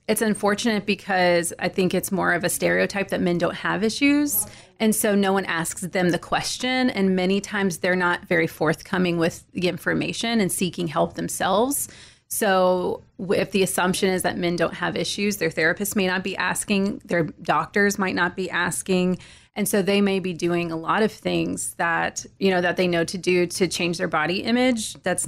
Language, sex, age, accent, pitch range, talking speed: English, female, 30-49, American, 175-205 Hz, 195 wpm